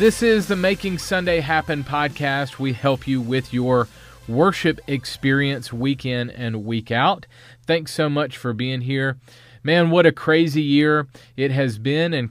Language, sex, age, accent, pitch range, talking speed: English, male, 40-59, American, 110-135 Hz, 165 wpm